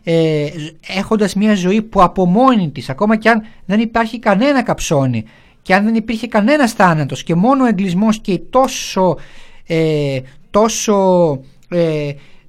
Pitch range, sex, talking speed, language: 160-220 Hz, male, 145 wpm, Greek